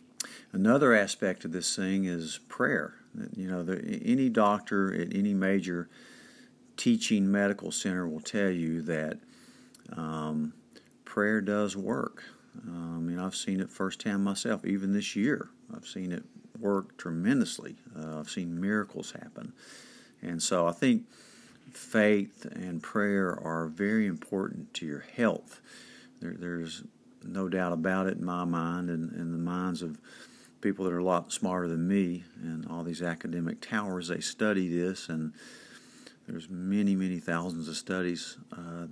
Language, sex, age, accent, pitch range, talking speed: English, male, 50-69, American, 85-110 Hz, 150 wpm